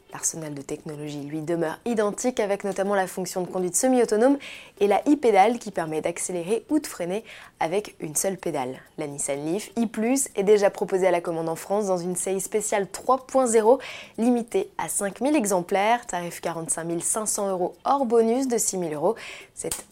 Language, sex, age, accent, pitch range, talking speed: French, female, 20-39, French, 185-245 Hz, 175 wpm